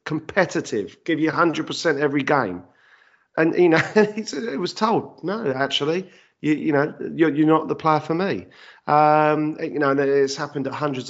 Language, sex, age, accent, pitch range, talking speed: English, male, 40-59, British, 150-225 Hz, 180 wpm